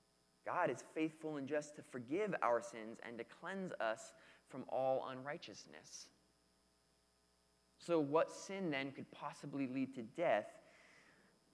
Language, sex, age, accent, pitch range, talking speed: English, male, 20-39, American, 120-180 Hz, 130 wpm